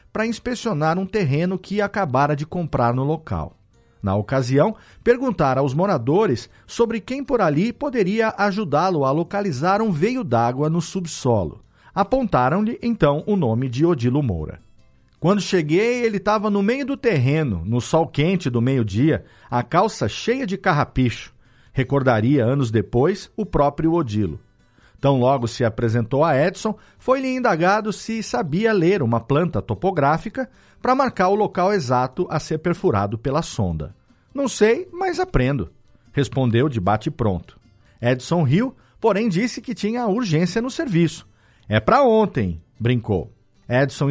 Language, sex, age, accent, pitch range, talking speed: Portuguese, male, 40-59, Brazilian, 125-205 Hz, 140 wpm